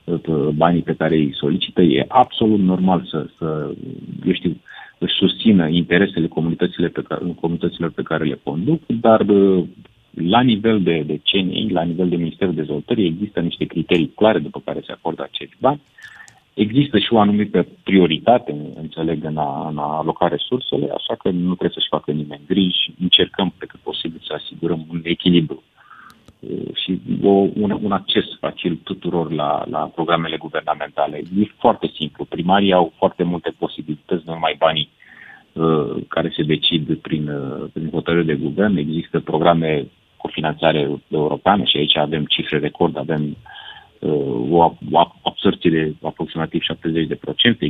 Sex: male